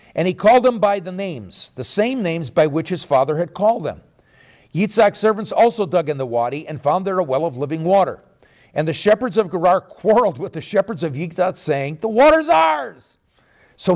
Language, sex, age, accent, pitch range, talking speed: English, male, 50-69, American, 155-220 Hz, 205 wpm